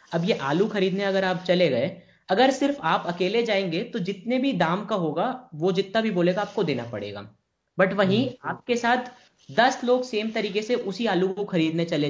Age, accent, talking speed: 20-39, native, 200 wpm